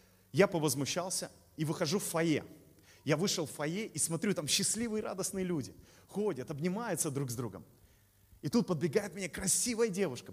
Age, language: 30-49, Russian